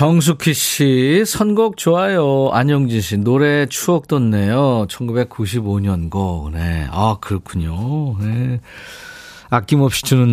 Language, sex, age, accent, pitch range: Korean, male, 40-59, native, 95-145 Hz